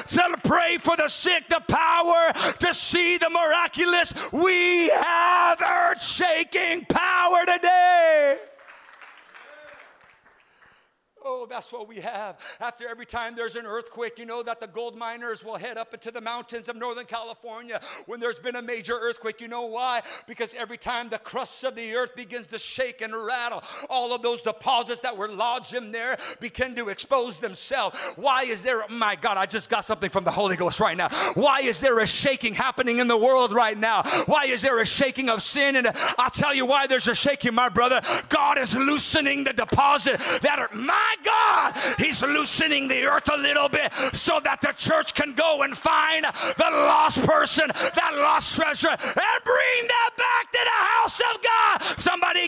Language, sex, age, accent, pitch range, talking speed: English, male, 50-69, American, 235-335 Hz, 180 wpm